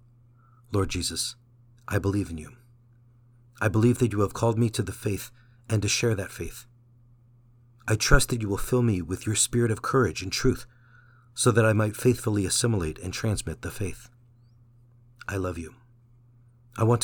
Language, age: English, 50-69